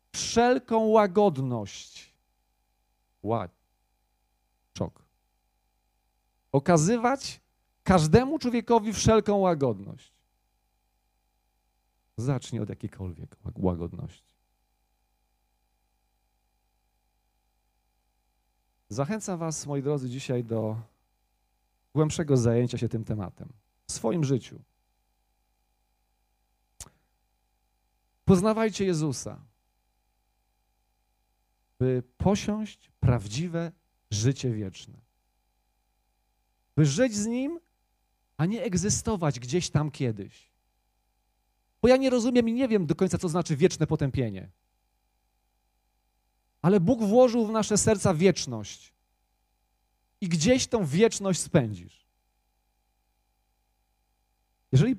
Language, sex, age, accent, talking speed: Polish, male, 40-59, native, 75 wpm